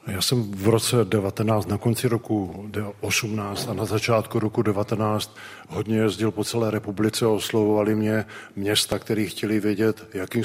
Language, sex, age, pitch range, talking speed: Czech, male, 50-69, 100-110 Hz, 155 wpm